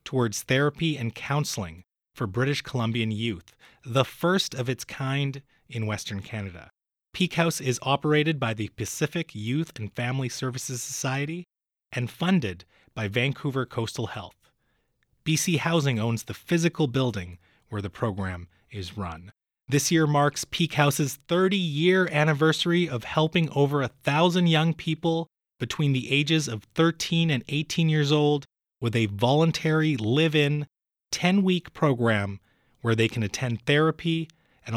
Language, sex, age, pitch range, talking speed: English, male, 30-49, 115-155 Hz, 140 wpm